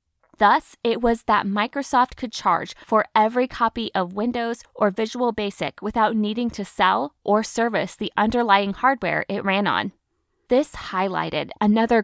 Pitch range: 205-250 Hz